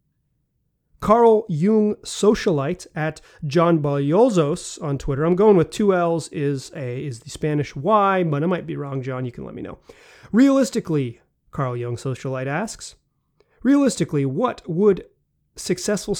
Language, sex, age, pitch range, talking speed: English, male, 30-49, 145-180 Hz, 145 wpm